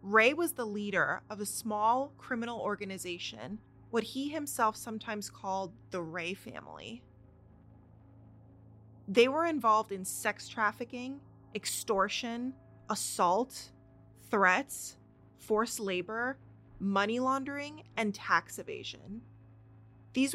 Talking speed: 100 wpm